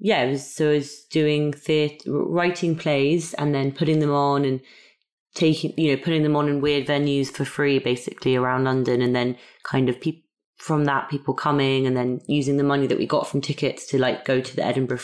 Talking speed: 205 wpm